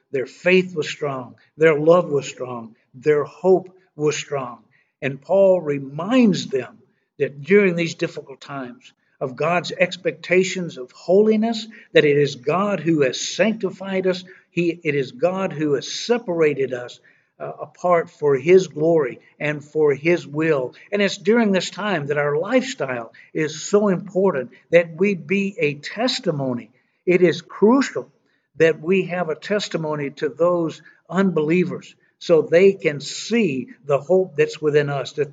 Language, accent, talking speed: English, American, 150 wpm